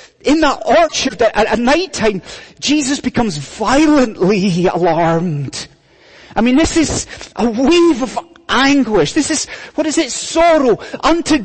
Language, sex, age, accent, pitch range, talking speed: English, male, 30-49, British, 225-330 Hz, 130 wpm